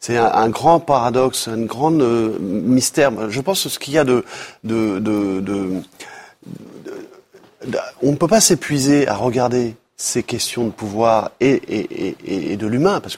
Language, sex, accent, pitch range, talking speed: French, male, French, 110-160 Hz, 180 wpm